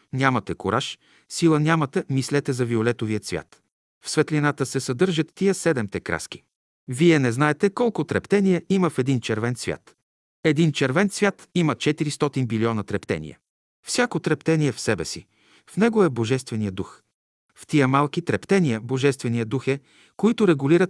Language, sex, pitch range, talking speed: Bulgarian, male, 120-160 Hz, 145 wpm